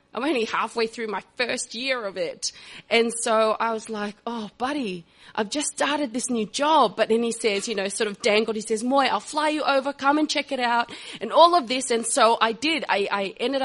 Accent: Australian